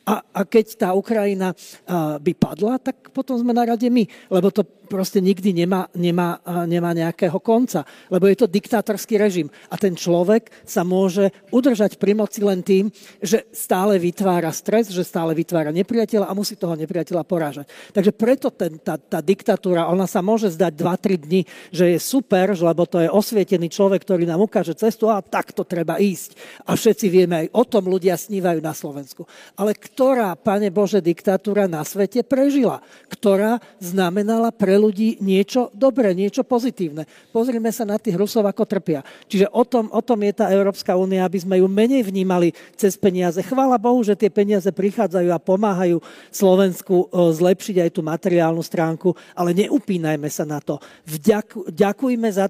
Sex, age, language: male, 40-59, Slovak